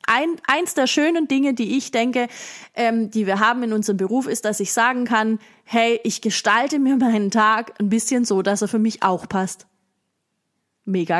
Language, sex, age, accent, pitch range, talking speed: German, female, 20-39, German, 205-250 Hz, 195 wpm